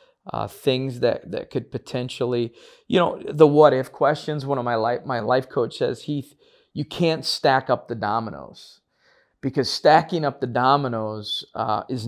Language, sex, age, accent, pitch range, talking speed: English, male, 40-59, American, 120-150 Hz, 170 wpm